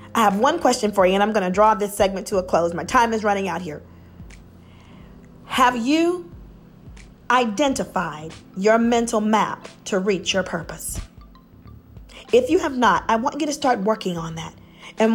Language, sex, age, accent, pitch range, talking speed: English, female, 40-59, American, 195-250 Hz, 180 wpm